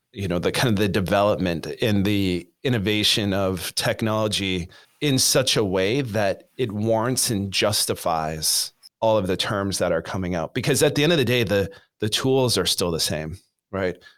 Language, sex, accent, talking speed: English, male, American, 185 wpm